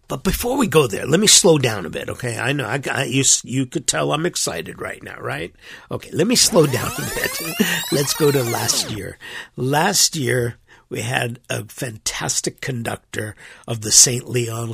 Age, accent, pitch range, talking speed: 50-69, American, 125-155 Hz, 195 wpm